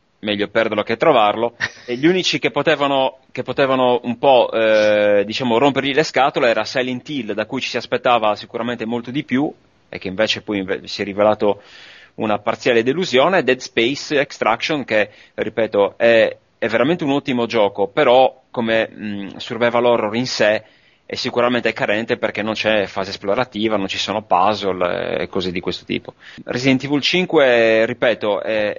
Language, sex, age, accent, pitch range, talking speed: Italian, male, 30-49, native, 105-125 Hz, 170 wpm